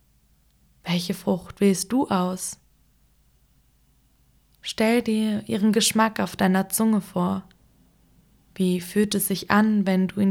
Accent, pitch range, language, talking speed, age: German, 185-210 Hz, German, 120 wpm, 20-39